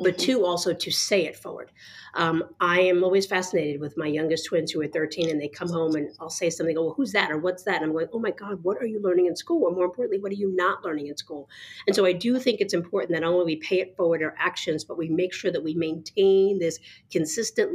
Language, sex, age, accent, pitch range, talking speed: English, female, 40-59, American, 150-175 Hz, 265 wpm